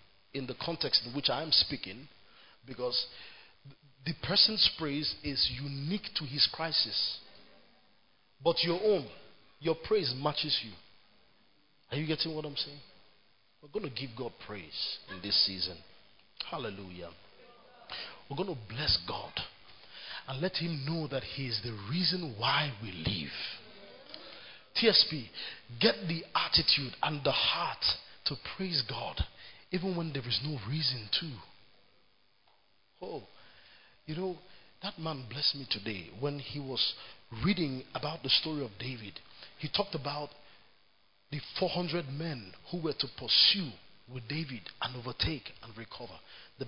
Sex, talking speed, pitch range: male, 135 wpm, 120-165 Hz